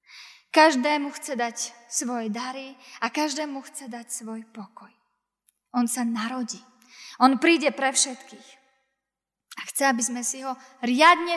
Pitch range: 230-275 Hz